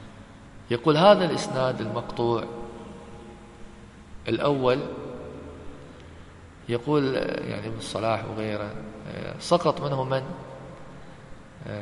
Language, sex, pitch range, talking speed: English, male, 110-140 Hz, 65 wpm